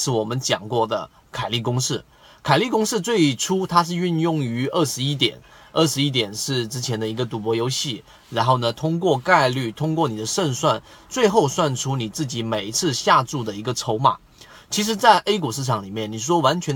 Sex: male